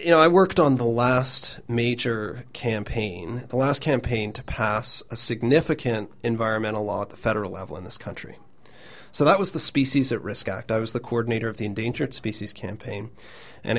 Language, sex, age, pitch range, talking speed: English, male, 30-49, 110-145 Hz, 185 wpm